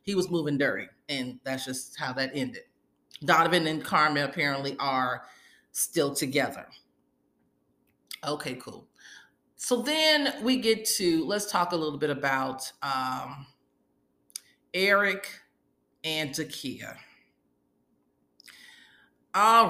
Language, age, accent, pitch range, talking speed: English, 40-59, American, 140-190 Hz, 105 wpm